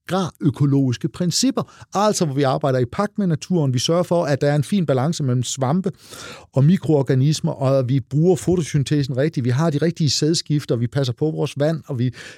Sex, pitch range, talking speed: male, 125-165 Hz, 205 wpm